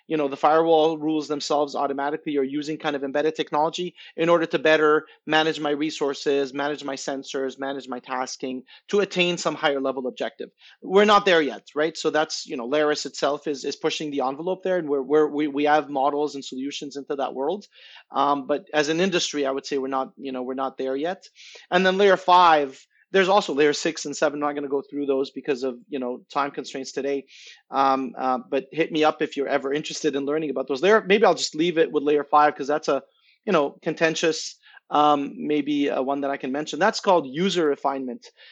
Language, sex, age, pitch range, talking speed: English, male, 30-49, 140-170 Hz, 220 wpm